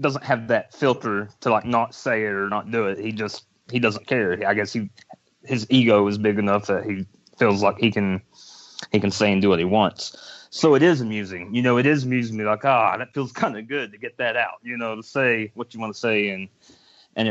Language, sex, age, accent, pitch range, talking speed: English, male, 30-49, American, 100-120 Hz, 255 wpm